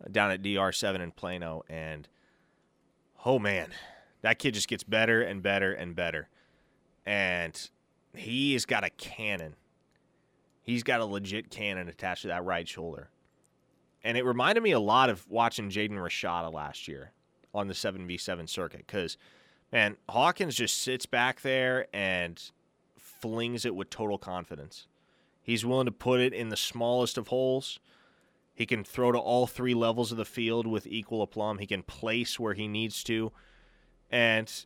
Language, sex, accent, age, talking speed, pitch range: English, male, American, 20-39, 160 wpm, 100-125 Hz